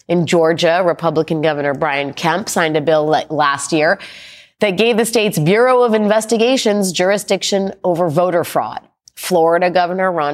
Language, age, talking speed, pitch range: English, 30-49, 145 wpm, 145-180 Hz